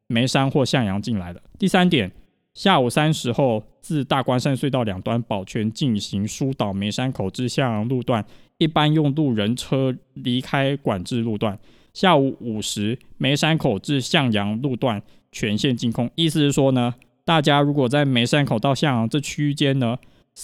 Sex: male